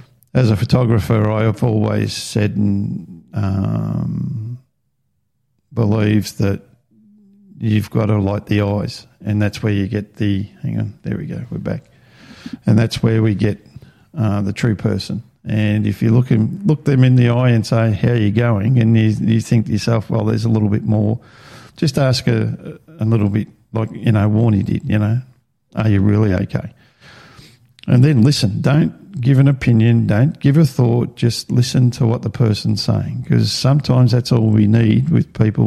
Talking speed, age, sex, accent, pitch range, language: 185 wpm, 50-69, male, Australian, 105-125 Hz, English